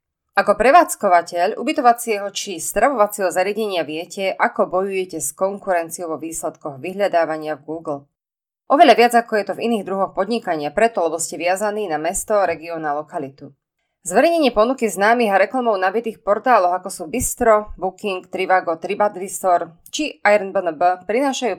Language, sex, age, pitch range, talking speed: Slovak, female, 20-39, 170-225 Hz, 140 wpm